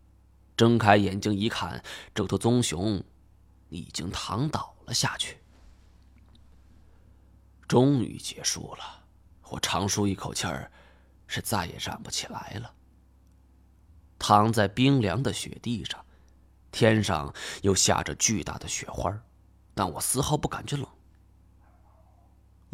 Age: 20-39